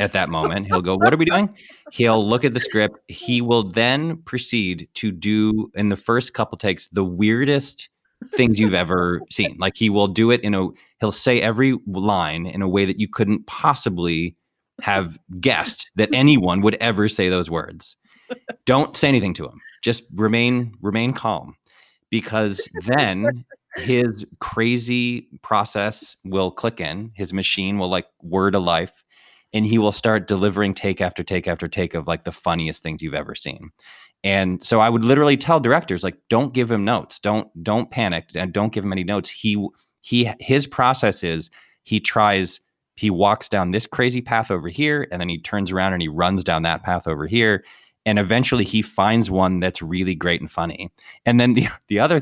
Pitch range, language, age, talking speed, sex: 90-120 Hz, English, 20-39, 190 wpm, male